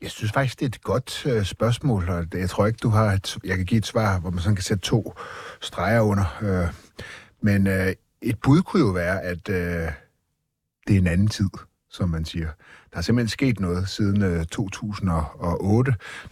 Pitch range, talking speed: 90-110 Hz, 200 wpm